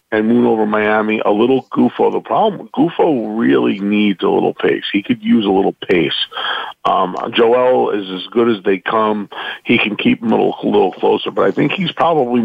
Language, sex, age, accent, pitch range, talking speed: English, male, 40-59, American, 100-125 Hz, 205 wpm